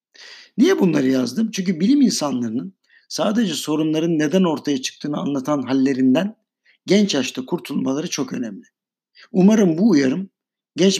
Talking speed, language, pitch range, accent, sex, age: 120 wpm, Turkish, 145-210 Hz, native, male, 60-79